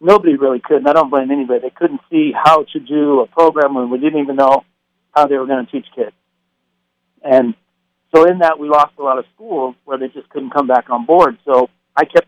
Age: 50-69